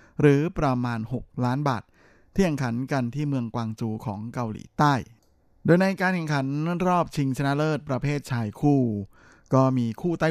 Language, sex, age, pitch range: Thai, male, 20-39, 115-140 Hz